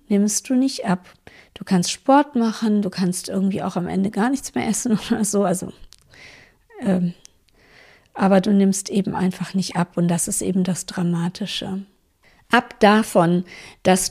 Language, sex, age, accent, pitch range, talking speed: German, female, 50-69, German, 180-215 Hz, 155 wpm